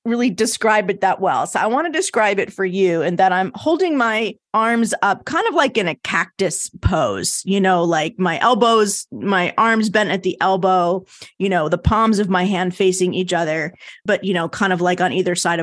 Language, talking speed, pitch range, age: English, 220 wpm, 180-235 Hz, 30-49